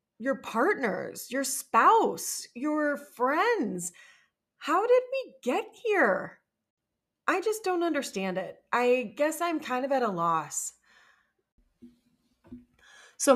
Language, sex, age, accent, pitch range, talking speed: English, female, 30-49, American, 220-345 Hz, 110 wpm